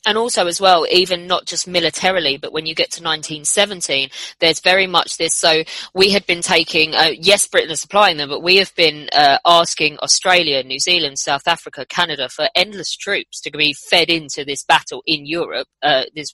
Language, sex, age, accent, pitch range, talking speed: English, female, 20-39, British, 150-175 Hz, 200 wpm